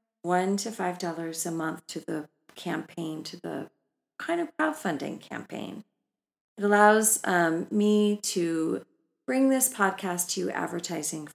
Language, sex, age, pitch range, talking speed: English, female, 40-59, 165-240 Hz, 130 wpm